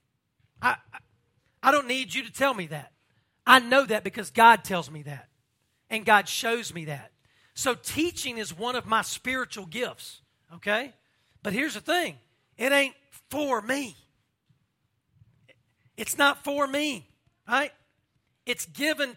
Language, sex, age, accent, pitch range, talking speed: English, male, 40-59, American, 145-235 Hz, 145 wpm